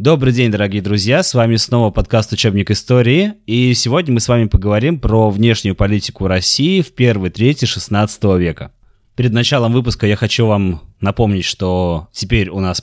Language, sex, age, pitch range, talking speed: Russian, male, 20-39, 90-115 Hz, 175 wpm